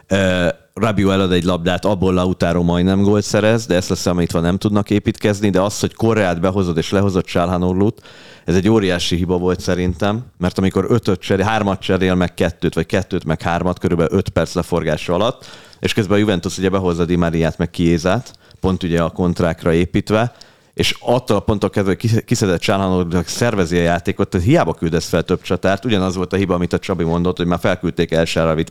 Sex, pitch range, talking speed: male, 85-100 Hz, 190 wpm